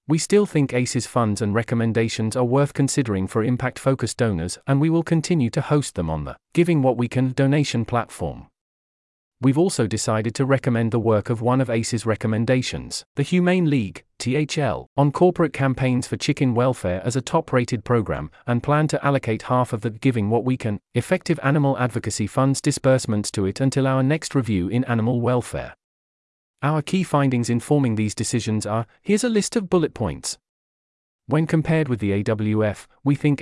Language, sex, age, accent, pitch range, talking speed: English, male, 40-59, British, 110-140 Hz, 180 wpm